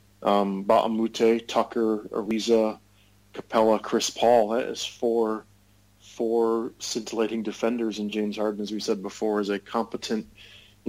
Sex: male